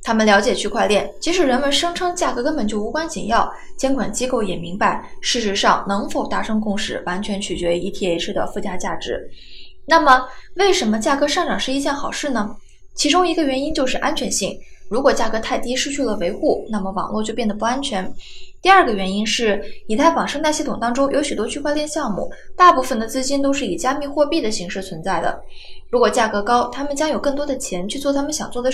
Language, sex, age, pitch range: Chinese, female, 20-39, 220-305 Hz